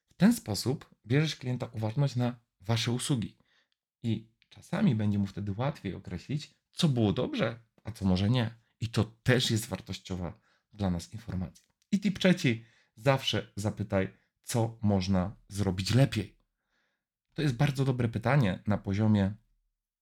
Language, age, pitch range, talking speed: Polish, 40-59, 100-125 Hz, 140 wpm